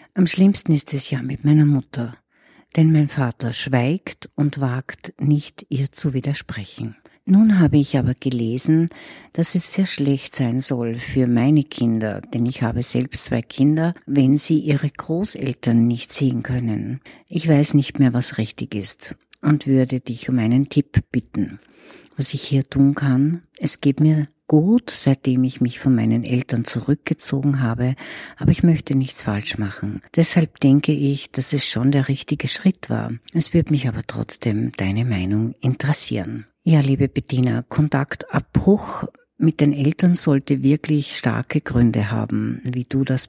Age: 60-79